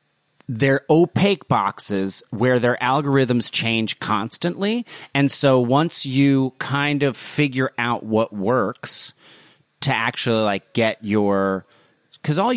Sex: male